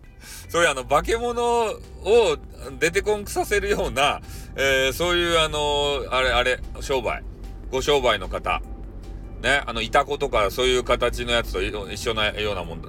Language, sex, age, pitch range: Japanese, male, 40-59, 125-170 Hz